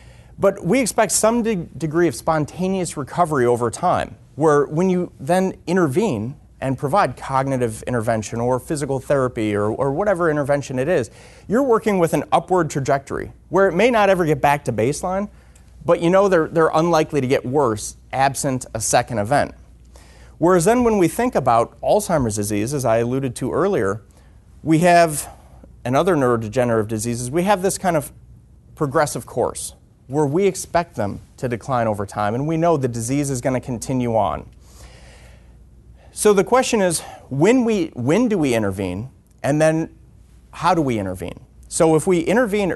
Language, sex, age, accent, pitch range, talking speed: English, male, 30-49, American, 115-180 Hz, 165 wpm